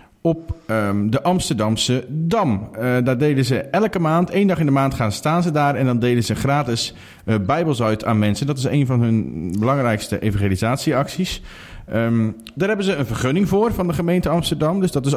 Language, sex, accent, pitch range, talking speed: Dutch, male, Dutch, 110-150 Hz, 195 wpm